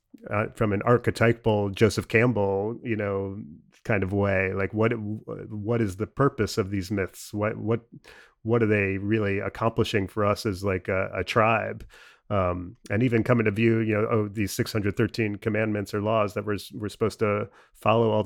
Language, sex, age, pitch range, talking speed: English, male, 30-49, 100-110 Hz, 180 wpm